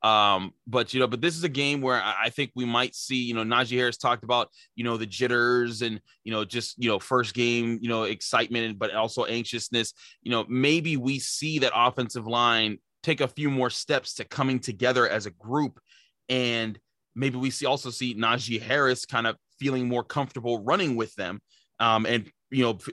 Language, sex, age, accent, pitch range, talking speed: English, male, 20-39, American, 115-140 Hz, 205 wpm